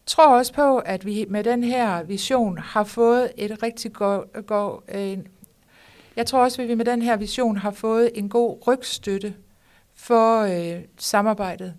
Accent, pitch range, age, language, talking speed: native, 180-220 Hz, 60-79, Danish, 160 wpm